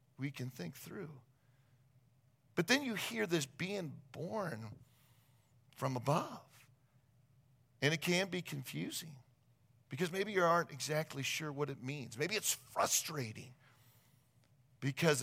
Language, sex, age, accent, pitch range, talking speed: English, male, 40-59, American, 125-150 Hz, 120 wpm